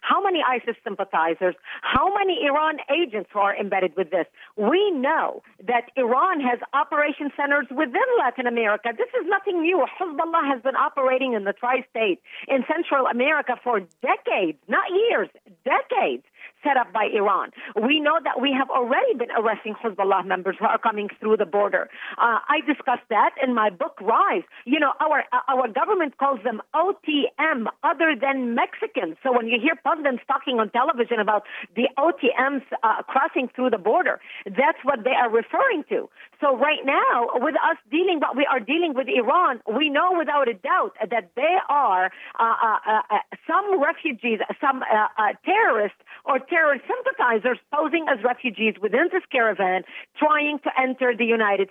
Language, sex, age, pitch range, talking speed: English, female, 50-69, 230-315 Hz, 170 wpm